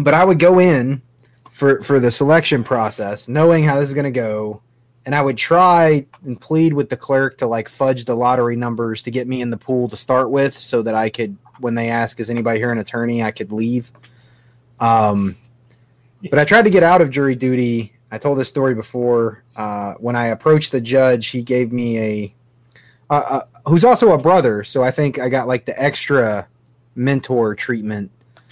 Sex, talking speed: male, 205 wpm